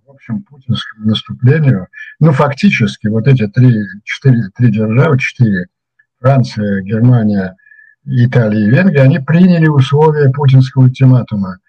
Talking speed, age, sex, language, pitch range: 110 wpm, 60-79, male, Ukrainian, 110-135 Hz